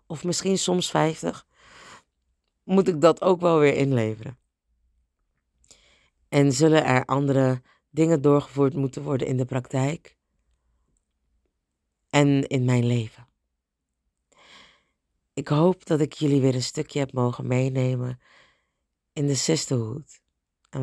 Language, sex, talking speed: Dutch, female, 120 wpm